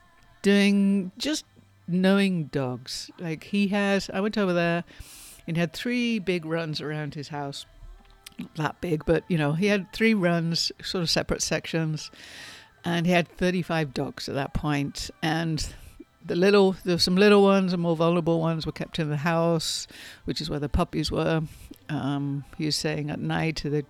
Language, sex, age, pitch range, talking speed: English, female, 60-79, 150-190 Hz, 175 wpm